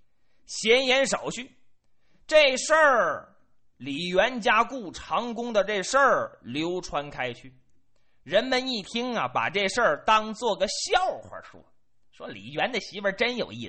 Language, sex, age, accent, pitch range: Chinese, male, 30-49, native, 185-250 Hz